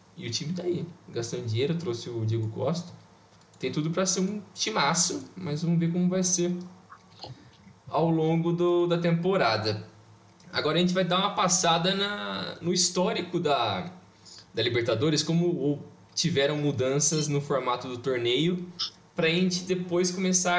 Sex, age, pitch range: male, 20-39, 115-170 Hz